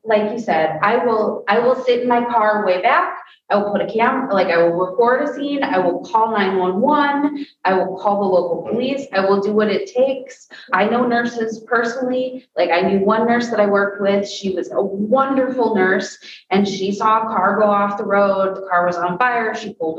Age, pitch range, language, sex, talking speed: 30-49, 175-235 Hz, English, female, 220 wpm